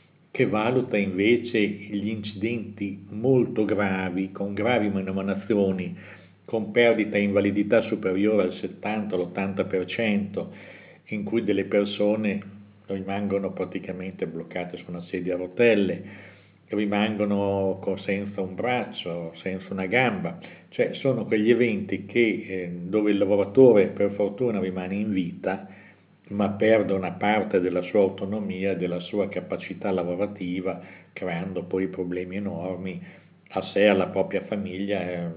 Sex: male